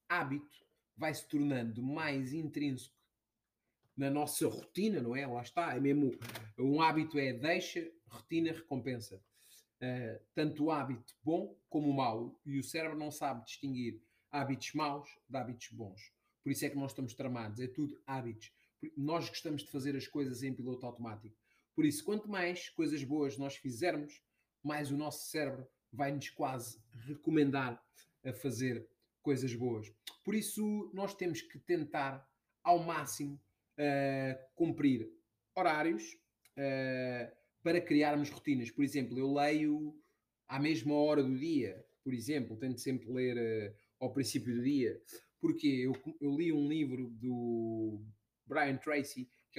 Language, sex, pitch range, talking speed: Portuguese, male, 125-150 Hz, 150 wpm